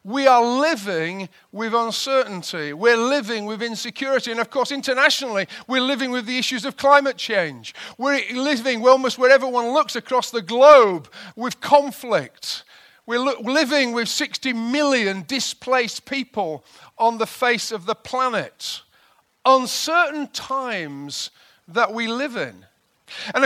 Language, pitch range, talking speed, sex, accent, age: English, 220-275 Hz, 135 wpm, male, British, 50-69